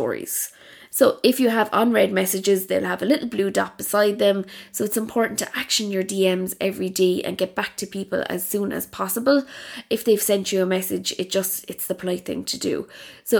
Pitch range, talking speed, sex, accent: 185-225 Hz, 210 wpm, female, Irish